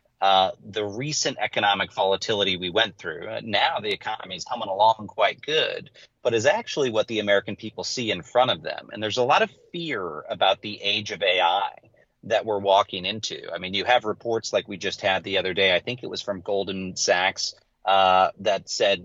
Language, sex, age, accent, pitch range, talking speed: English, male, 30-49, American, 95-125 Hz, 210 wpm